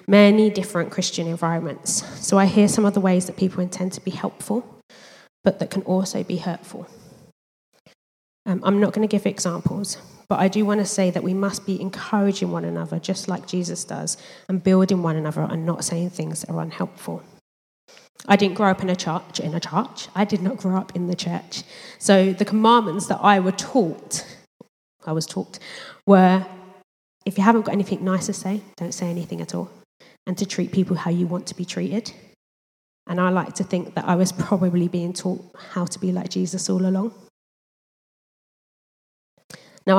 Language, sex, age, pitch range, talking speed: English, female, 20-39, 180-200 Hz, 195 wpm